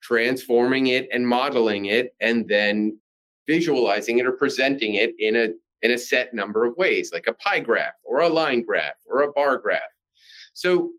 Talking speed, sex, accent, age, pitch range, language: 180 wpm, male, American, 30-49, 115-160 Hz, English